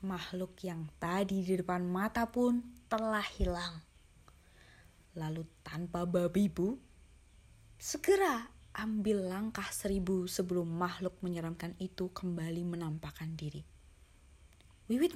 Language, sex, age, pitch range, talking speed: Indonesian, female, 20-39, 170-245 Hz, 100 wpm